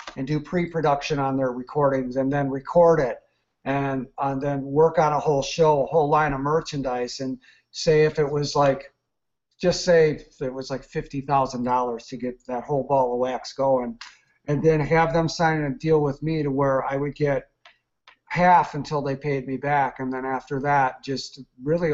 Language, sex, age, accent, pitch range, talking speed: English, male, 50-69, American, 135-160 Hz, 190 wpm